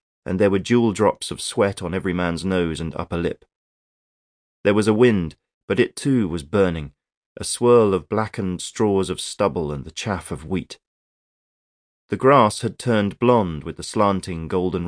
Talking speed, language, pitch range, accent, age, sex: 175 wpm, English, 85-110 Hz, British, 40-59, male